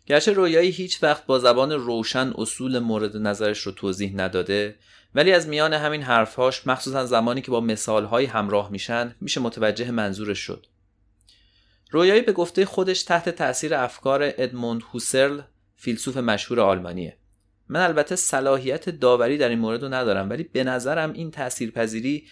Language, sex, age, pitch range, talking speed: Persian, male, 30-49, 105-135 Hz, 150 wpm